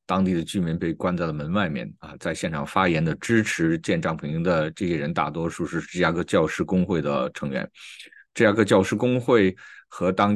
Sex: male